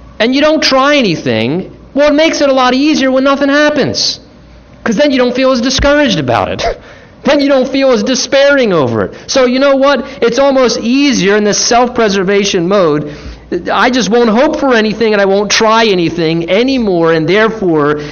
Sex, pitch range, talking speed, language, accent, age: male, 145-225 Hz, 190 wpm, English, American, 50-69